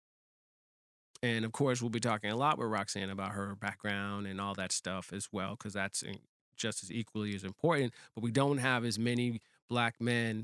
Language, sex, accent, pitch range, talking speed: English, male, American, 105-125 Hz, 195 wpm